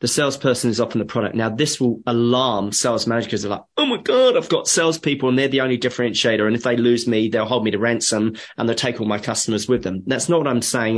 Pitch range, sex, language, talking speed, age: 110-130 Hz, male, English, 270 wpm, 30-49